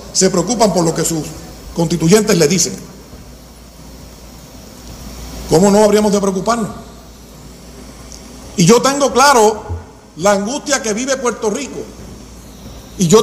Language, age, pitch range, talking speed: Spanish, 50-69, 200-250 Hz, 120 wpm